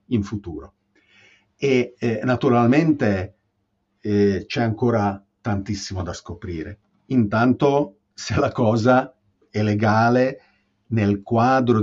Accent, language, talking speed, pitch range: native, Italian, 95 wpm, 105-130 Hz